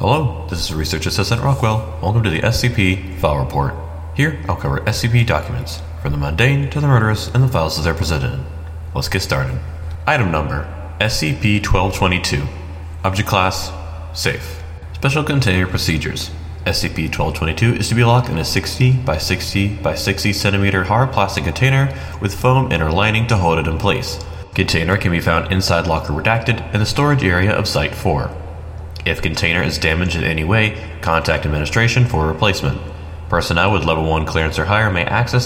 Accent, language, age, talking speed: American, English, 30-49, 170 wpm